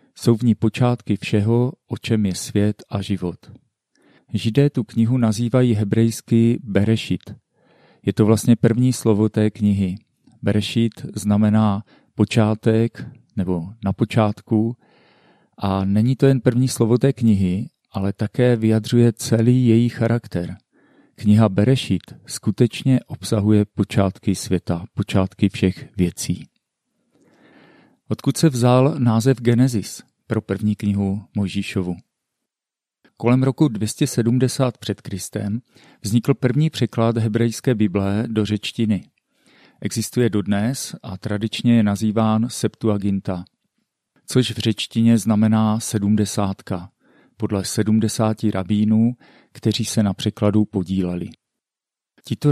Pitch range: 105-120 Hz